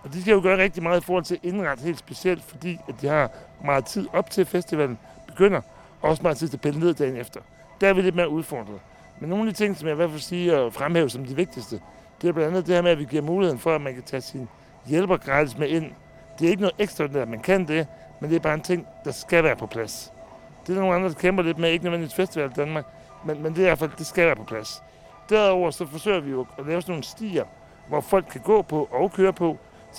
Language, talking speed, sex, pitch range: Danish, 275 wpm, male, 140-180 Hz